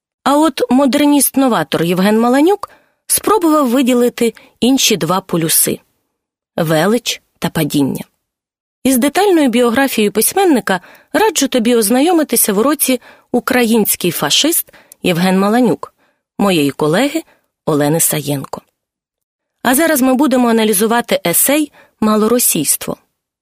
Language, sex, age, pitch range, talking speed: Ukrainian, female, 30-49, 210-280 Hz, 100 wpm